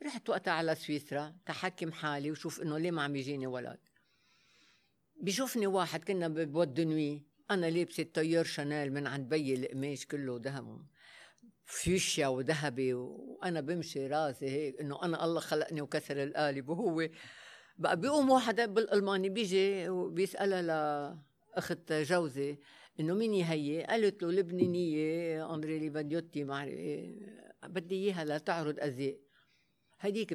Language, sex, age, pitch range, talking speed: Arabic, female, 60-79, 150-195 Hz, 125 wpm